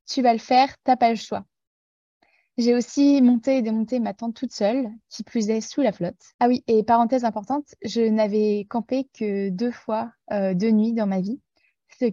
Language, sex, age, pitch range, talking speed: French, female, 20-39, 210-250 Hz, 205 wpm